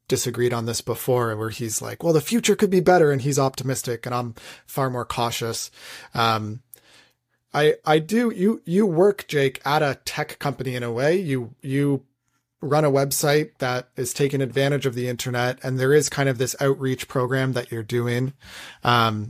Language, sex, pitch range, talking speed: English, male, 115-140 Hz, 185 wpm